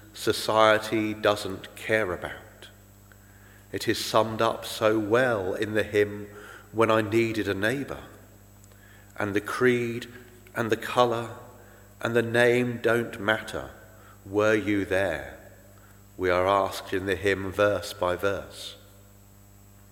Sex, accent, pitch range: male, British, 100-110 Hz